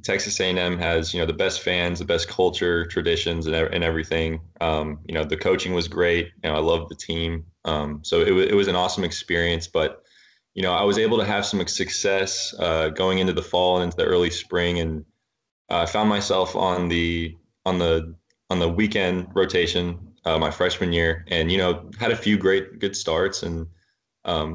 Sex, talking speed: male, 210 wpm